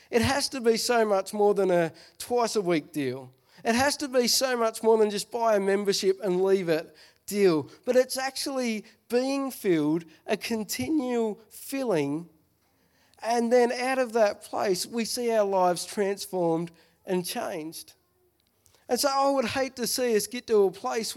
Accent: Australian